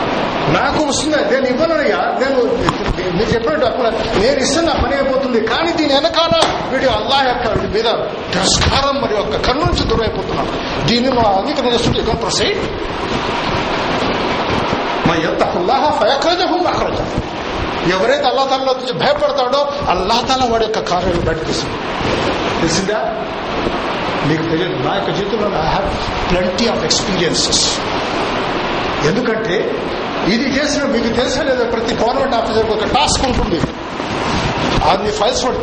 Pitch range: 220-275 Hz